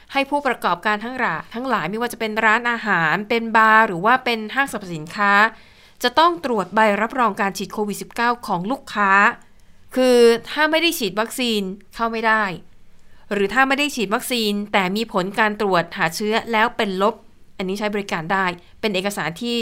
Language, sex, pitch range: Thai, female, 195-240 Hz